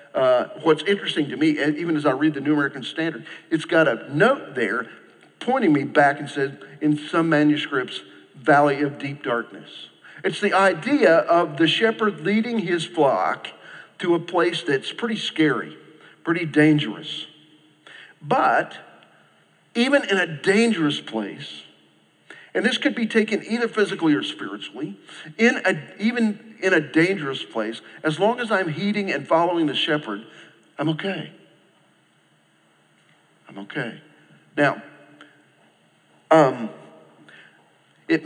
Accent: American